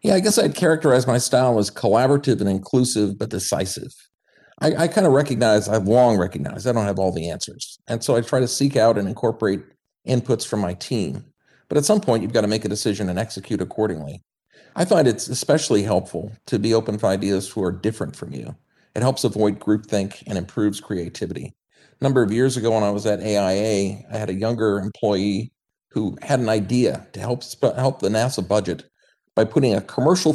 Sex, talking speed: male, 210 wpm